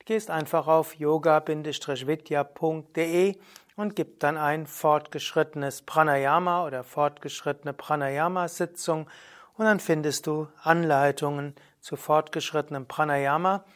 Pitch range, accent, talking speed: 145-180 Hz, German, 90 wpm